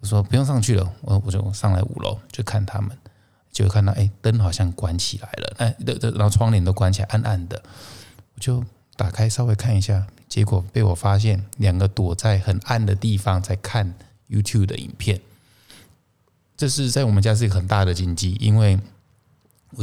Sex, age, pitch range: male, 20-39, 100-120 Hz